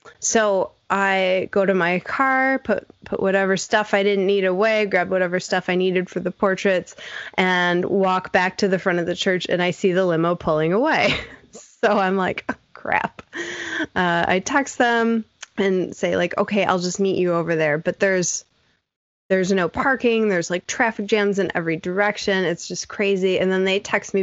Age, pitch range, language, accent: 20-39, 175-215 Hz, English, American